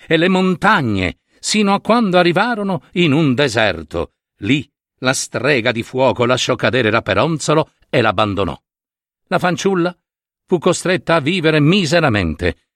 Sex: male